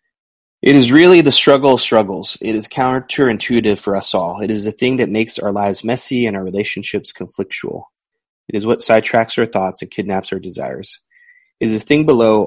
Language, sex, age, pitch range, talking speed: English, male, 20-39, 100-125 Hz, 195 wpm